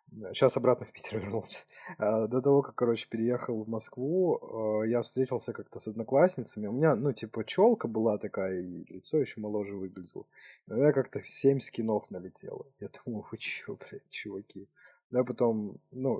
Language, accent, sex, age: Russian, native, male, 20-39